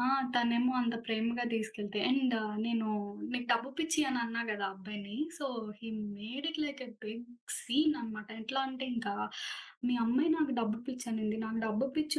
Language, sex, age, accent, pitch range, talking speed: Telugu, female, 20-39, native, 235-295 Hz, 160 wpm